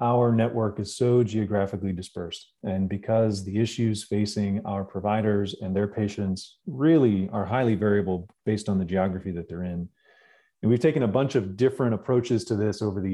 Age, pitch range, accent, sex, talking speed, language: 30-49, 100-120 Hz, American, male, 180 wpm, English